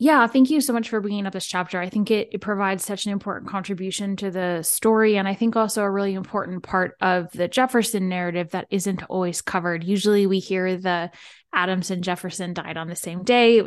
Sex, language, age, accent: female, English, 10-29, American